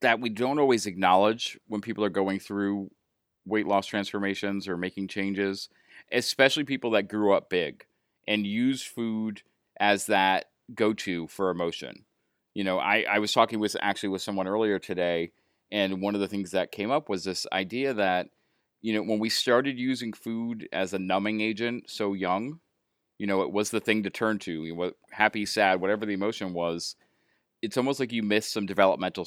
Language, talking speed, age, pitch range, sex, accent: English, 185 wpm, 30-49, 95-110 Hz, male, American